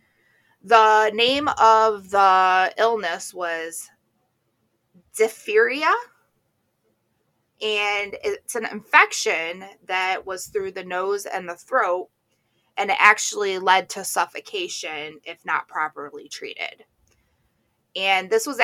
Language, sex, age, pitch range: English, female, 20-39, 170-230 Hz